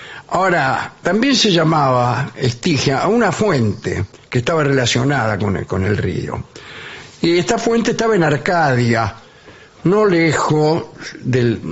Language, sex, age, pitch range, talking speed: English, male, 60-79, 120-175 Hz, 120 wpm